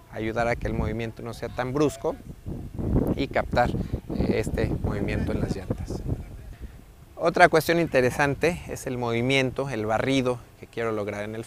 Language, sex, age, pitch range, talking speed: Spanish, male, 30-49, 105-125 Hz, 150 wpm